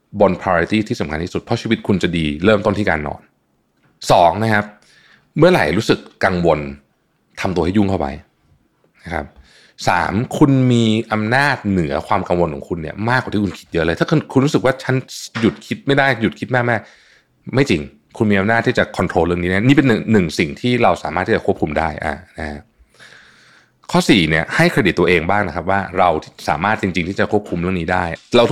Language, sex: Thai, male